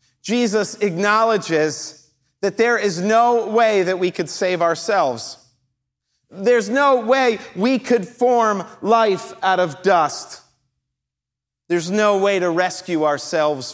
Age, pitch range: 40-59, 130-195 Hz